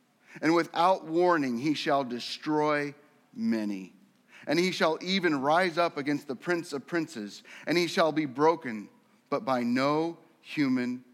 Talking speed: 145 wpm